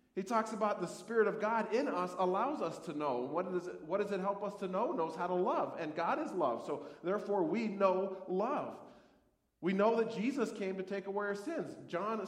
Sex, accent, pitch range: male, American, 140-220 Hz